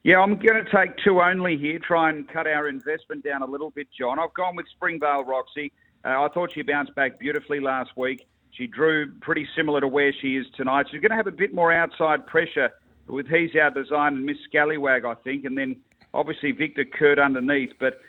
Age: 50-69